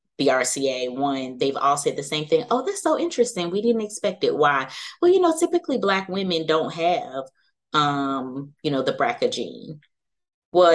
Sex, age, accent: female, 20-39, American